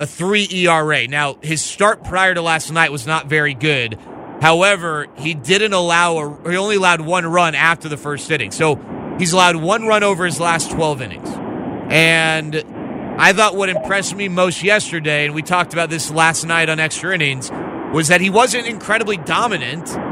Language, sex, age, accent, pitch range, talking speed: English, male, 30-49, American, 155-190 Hz, 185 wpm